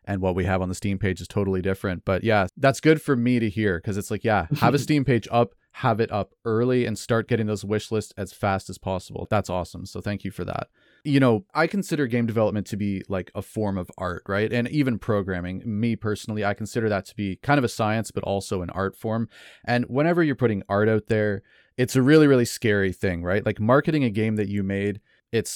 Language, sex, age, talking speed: English, male, 30-49, 245 wpm